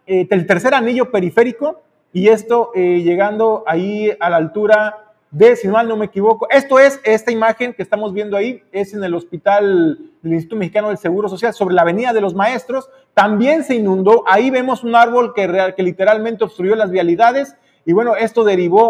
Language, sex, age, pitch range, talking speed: Spanish, male, 40-59, 180-230 Hz, 195 wpm